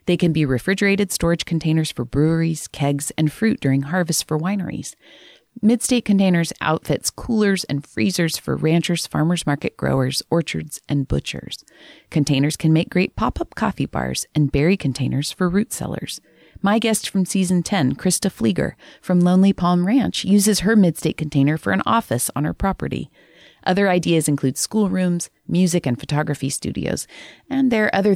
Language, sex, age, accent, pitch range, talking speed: English, female, 40-59, American, 145-190 Hz, 165 wpm